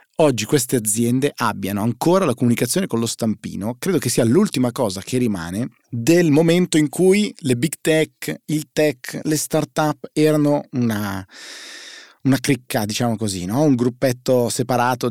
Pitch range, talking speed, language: 105-140 Hz, 150 wpm, Italian